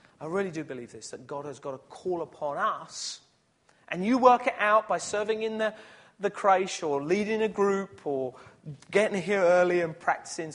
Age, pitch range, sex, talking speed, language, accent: 40-59, 120-170 Hz, male, 195 wpm, English, British